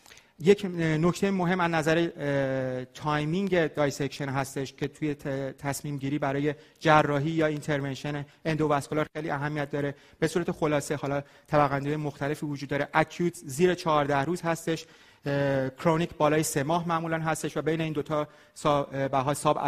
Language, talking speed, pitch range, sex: Persian, 140 wpm, 145-165 Hz, male